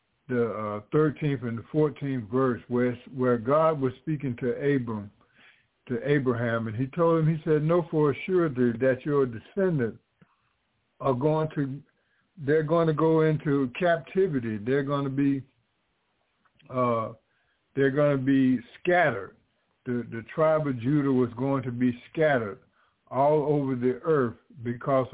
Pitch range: 125-155 Hz